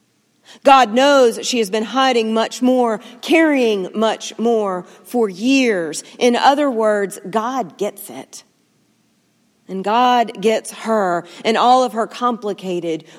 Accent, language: American, English